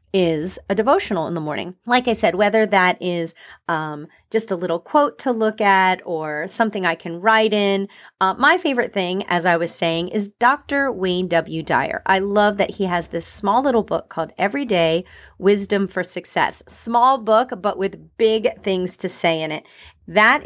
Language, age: English, 30-49